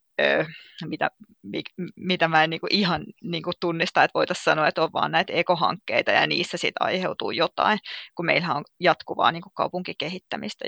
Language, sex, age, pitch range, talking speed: Finnish, female, 20-39, 160-180 Hz, 155 wpm